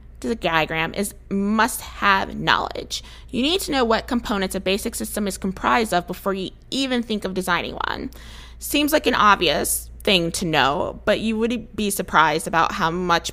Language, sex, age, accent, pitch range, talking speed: English, female, 20-39, American, 155-230 Hz, 175 wpm